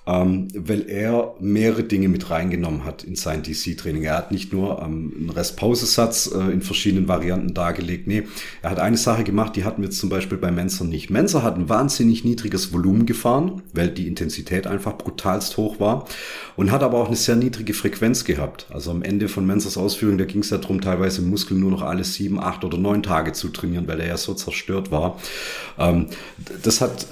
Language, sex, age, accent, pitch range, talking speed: German, male, 40-59, German, 90-105 Hz, 205 wpm